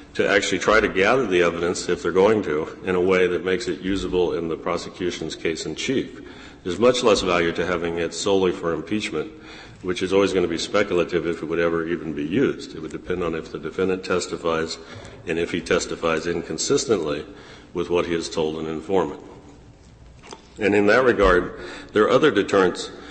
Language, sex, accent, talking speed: English, male, American, 195 wpm